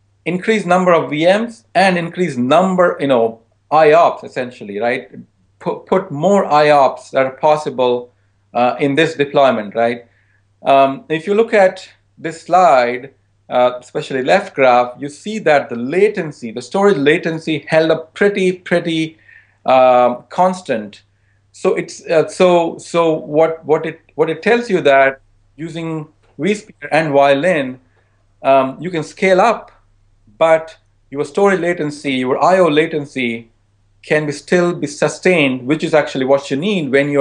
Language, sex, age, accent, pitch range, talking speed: English, male, 40-59, Indian, 125-165 Hz, 145 wpm